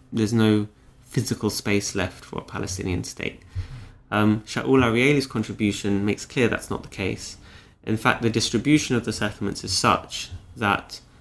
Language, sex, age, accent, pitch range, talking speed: English, male, 20-39, British, 100-115 Hz, 155 wpm